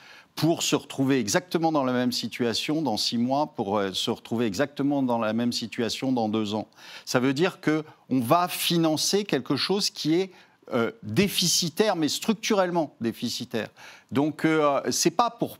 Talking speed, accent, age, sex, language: 160 wpm, French, 50-69, male, French